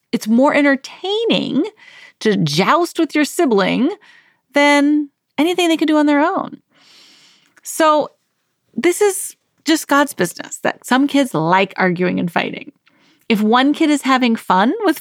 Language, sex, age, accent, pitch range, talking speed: English, female, 30-49, American, 200-305 Hz, 145 wpm